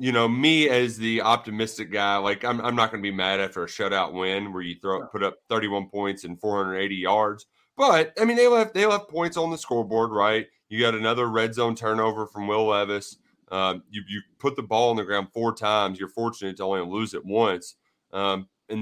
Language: English